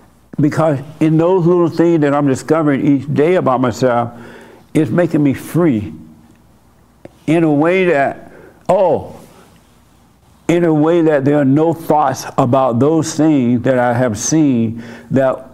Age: 60-79